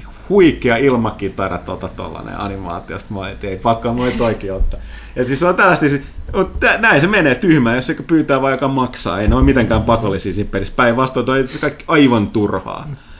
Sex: male